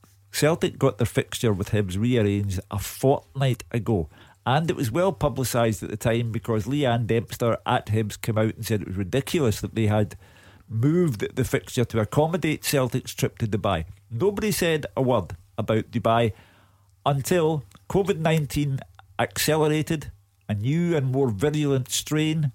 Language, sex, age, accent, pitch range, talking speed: English, male, 50-69, British, 100-135 Hz, 150 wpm